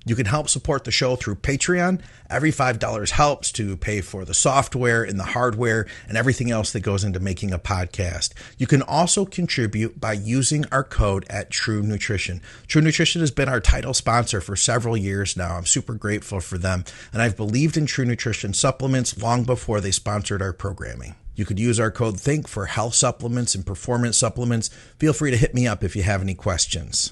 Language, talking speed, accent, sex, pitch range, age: English, 200 wpm, American, male, 100-130 Hz, 40-59